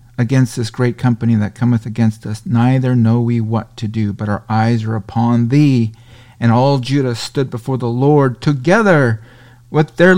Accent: American